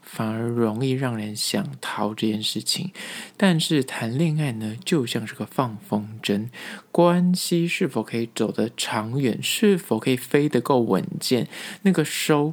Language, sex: Chinese, male